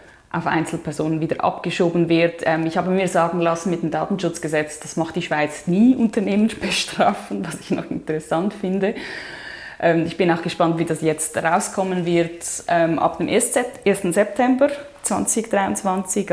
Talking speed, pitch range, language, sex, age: 145 wpm, 160-190 Hz, German, female, 20-39